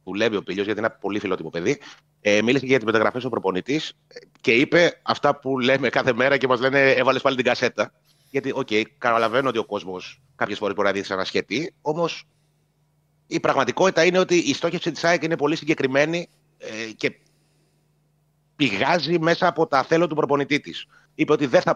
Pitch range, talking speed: 105-150 Hz, 195 wpm